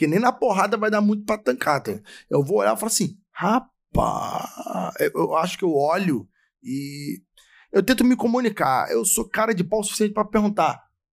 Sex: male